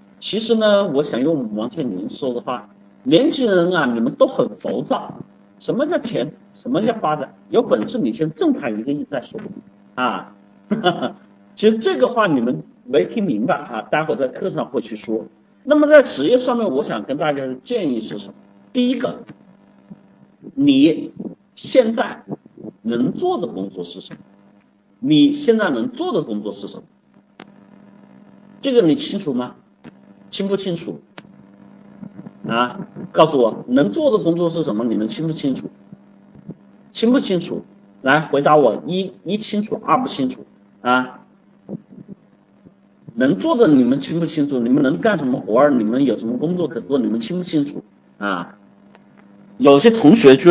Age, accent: 50-69, native